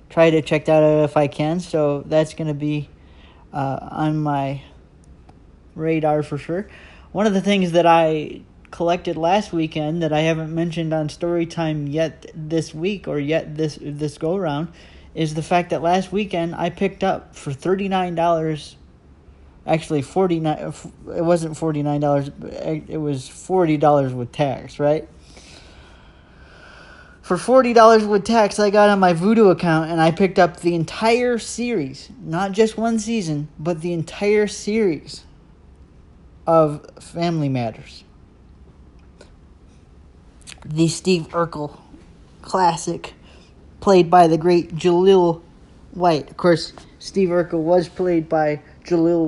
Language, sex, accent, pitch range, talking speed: English, male, American, 145-175 Hz, 145 wpm